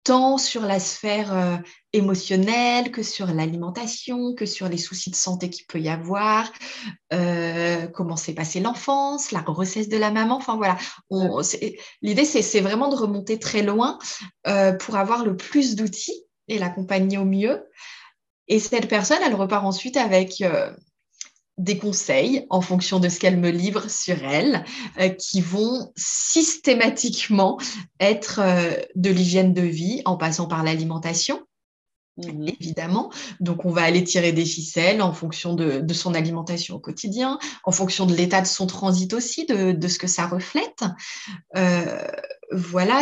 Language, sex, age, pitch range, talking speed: French, female, 20-39, 180-225 Hz, 160 wpm